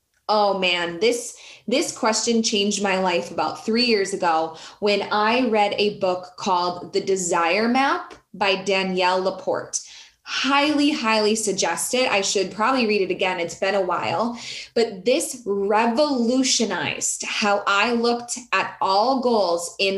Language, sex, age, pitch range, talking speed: English, female, 20-39, 200-255 Hz, 145 wpm